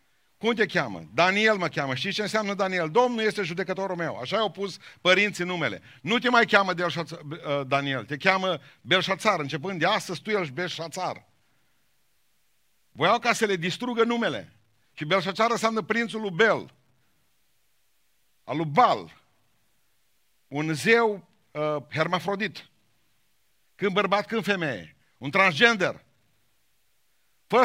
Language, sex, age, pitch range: Romanian, male, 50-69, 165-220 Hz